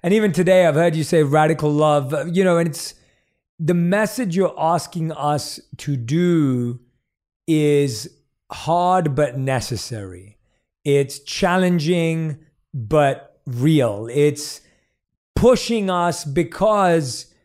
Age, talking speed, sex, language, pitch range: 30-49, 110 wpm, male, English, 145-180 Hz